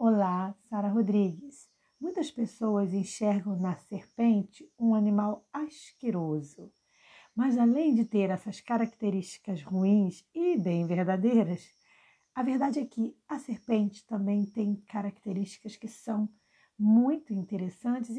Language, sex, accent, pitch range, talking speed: Portuguese, female, Brazilian, 190-240 Hz, 110 wpm